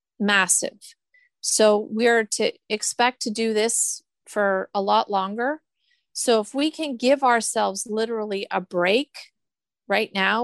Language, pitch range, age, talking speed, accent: English, 195-225 Hz, 30-49, 140 wpm, American